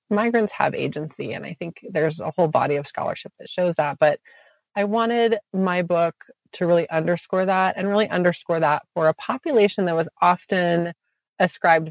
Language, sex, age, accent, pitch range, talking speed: English, female, 30-49, American, 155-190 Hz, 175 wpm